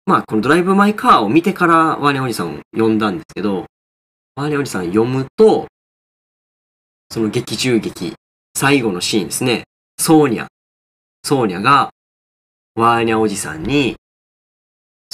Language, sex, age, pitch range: Japanese, male, 20-39, 105-140 Hz